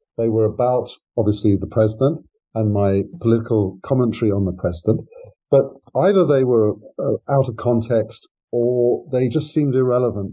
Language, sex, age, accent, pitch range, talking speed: English, male, 50-69, British, 105-135 Hz, 145 wpm